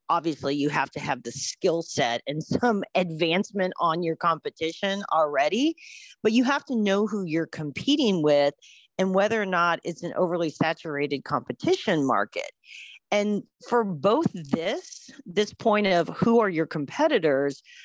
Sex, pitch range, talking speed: female, 155-220 Hz, 150 wpm